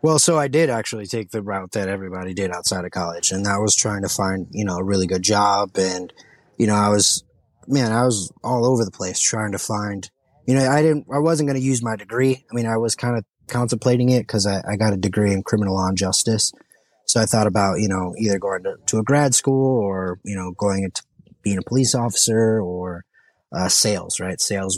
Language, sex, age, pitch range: English, male, 20-39, 95-125 Hz